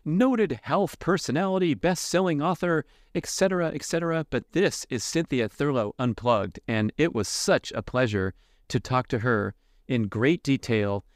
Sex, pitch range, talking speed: male, 110-135 Hz, 140 wpm